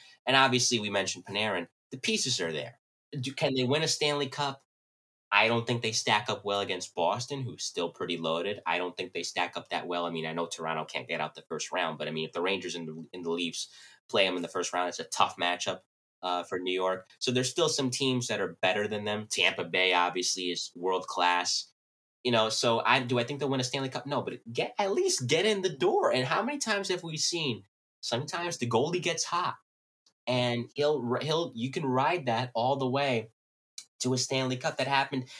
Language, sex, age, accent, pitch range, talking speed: English, male, 20-39, American, 95-145 Hz, 235 wpm